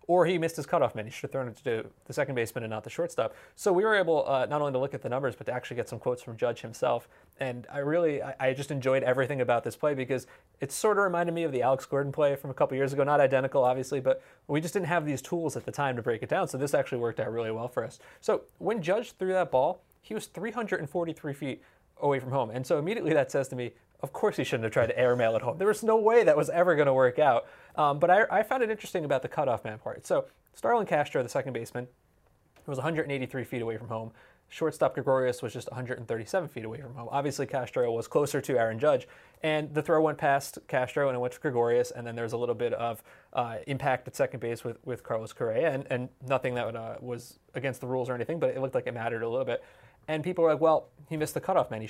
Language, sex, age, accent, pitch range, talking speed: English, male, 30-49, American, 125-160 Hz, 270 wpm